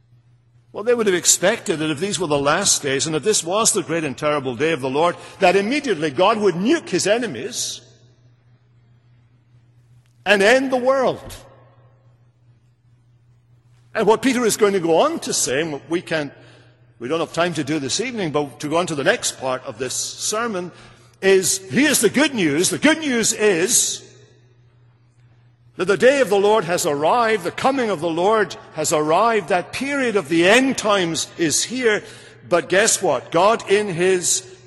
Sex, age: male, 60-79